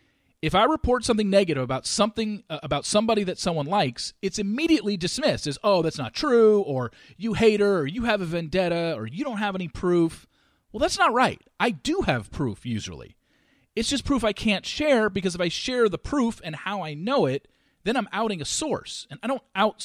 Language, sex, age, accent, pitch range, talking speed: English, male, 40-59, American, 150-220 Hz, 210 wpm